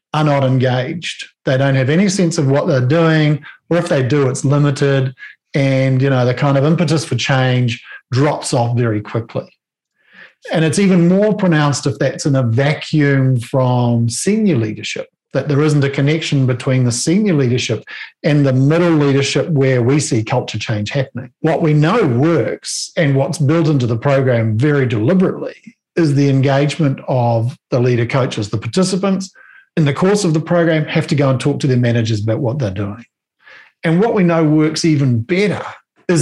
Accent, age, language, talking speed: Australian, 50-69, English, 180 wpm